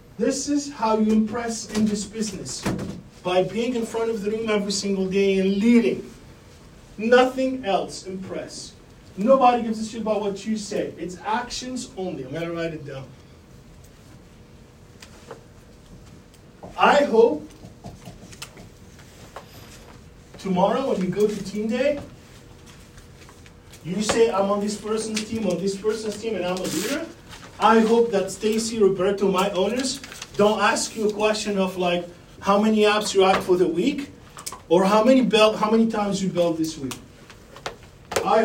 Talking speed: 150 wpm